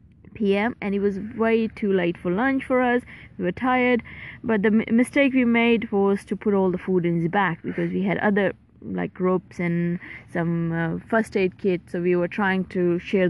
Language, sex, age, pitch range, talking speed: English, female, 20-39, 180-235 Hz, 210 wpm